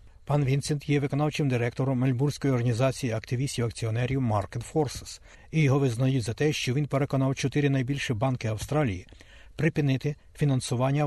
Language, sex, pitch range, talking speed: Ukrainian, male, 115-145 Hz, 130 wpm